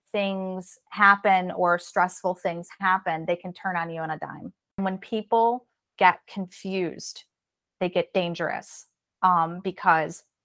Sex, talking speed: female, 130 wpm